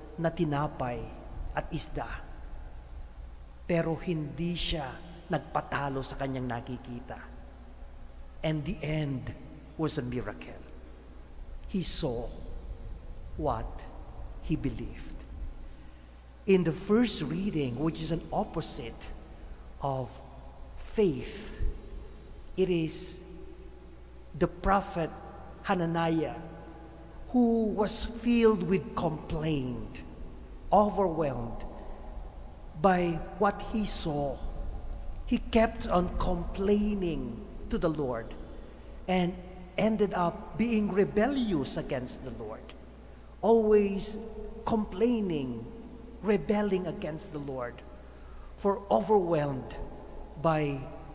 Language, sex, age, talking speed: English, male, 50-69, 80 wpm